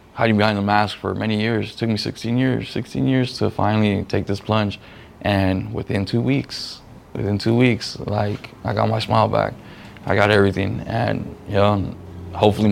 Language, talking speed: English, 190 wpm